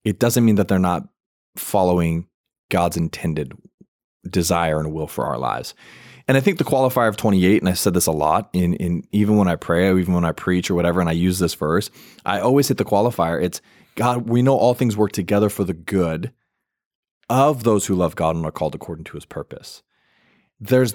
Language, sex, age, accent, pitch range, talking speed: English, male, 20-39, American, 90-115 Hz, 210 wpm